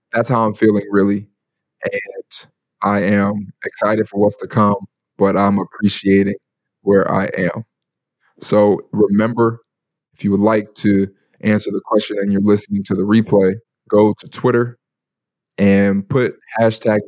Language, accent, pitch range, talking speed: English, American, 95-110 Hz, 145 wpm